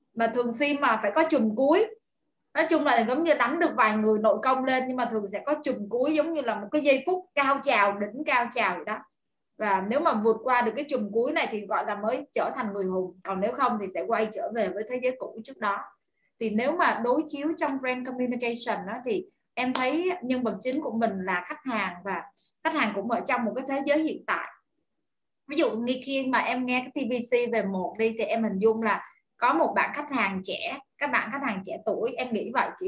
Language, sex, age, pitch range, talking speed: Vietnamese, female, 20-39, 215-285 Hz, 250 wpm